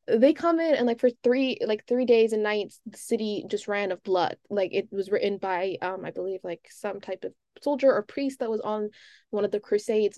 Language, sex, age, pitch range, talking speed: English, female, 20-39, 190-215 Hz, 235 wpm